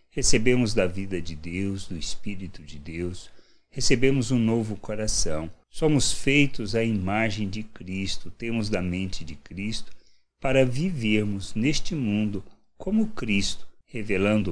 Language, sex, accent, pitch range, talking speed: Portuguese, male, Brazilian, 95-135 Hz, 130 wpm